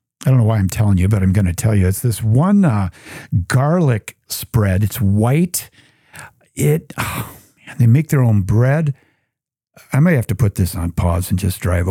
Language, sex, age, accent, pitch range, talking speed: English, male, 50-69, American, 115-160 Hz, 190 wpm